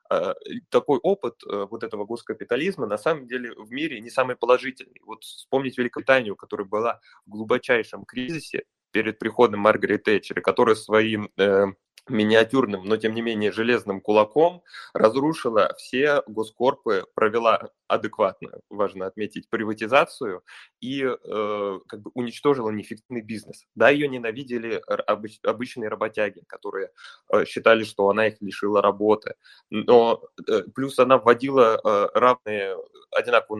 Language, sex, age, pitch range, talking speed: Russian, male, 20-39, 105-145 Hz, 130 wpm